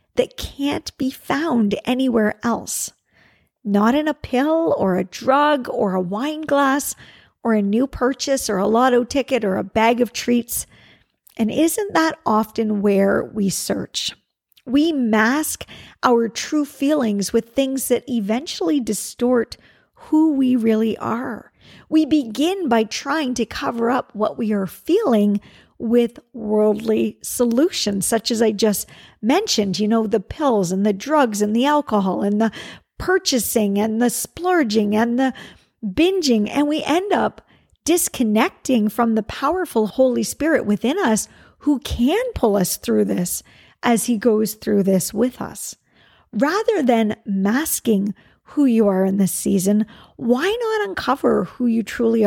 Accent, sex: American, female